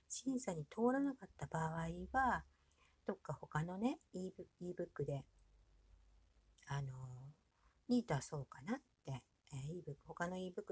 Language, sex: Japanese, female